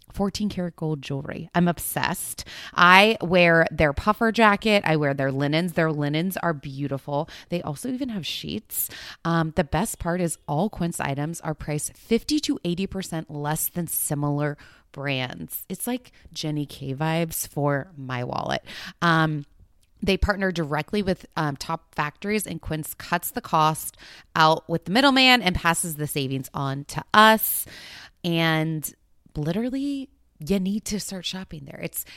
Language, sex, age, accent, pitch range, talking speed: English, female, 20-39, American, 150-190 Hz, 150 wpm